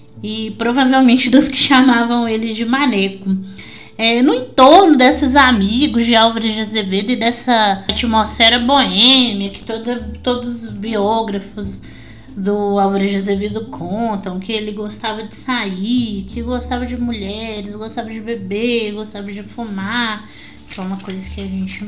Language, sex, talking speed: Portuguese, female, 140 wpm